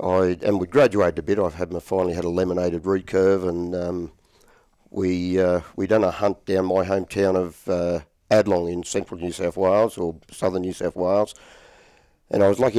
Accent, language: Australian, English